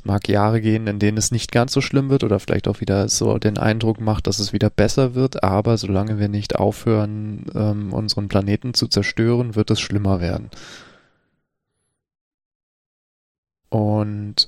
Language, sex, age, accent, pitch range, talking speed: German, male, 20-39, German, 100-110 Hz, 160 wpm